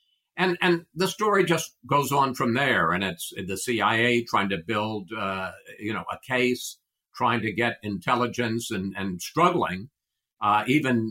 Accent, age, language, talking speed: American, 50-69, English, 160 wpm